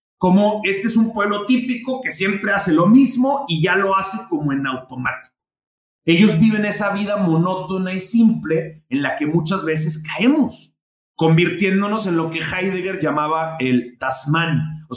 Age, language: 40-59, Spanish